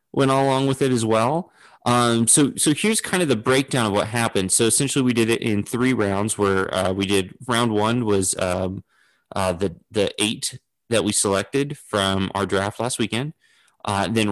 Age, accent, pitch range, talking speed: 30-49, American, 95-120 Hz, 195 wpm